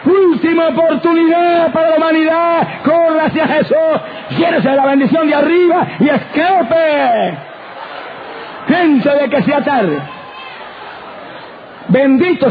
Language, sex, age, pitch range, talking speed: Spanish, male, 50-69, 175-260 Hz, 100 wpm